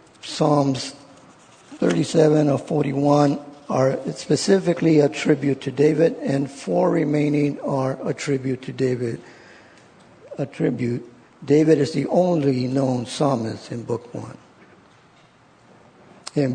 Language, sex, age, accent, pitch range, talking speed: English, male, 50-69, American, 130-155 Hz, 110 wpm